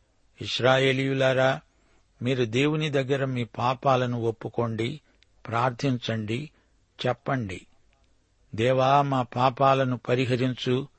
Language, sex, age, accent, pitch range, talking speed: Telugu, male, 60-79, native, 115-135 Hz, 70 wpm